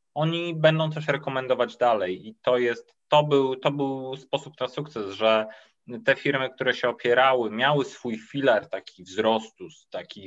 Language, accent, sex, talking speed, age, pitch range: Polish, native, male, 160 wpm, 20-39, 110-140 Hz